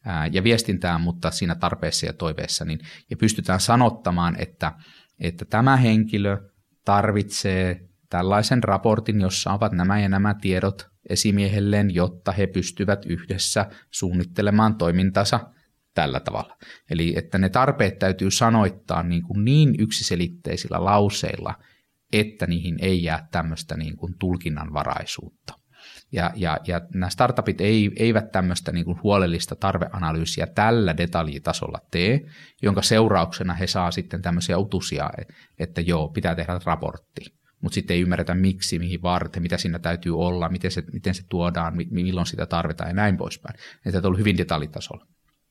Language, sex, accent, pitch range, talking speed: Finnish, male, native, 85-105 Hz, 130 wpm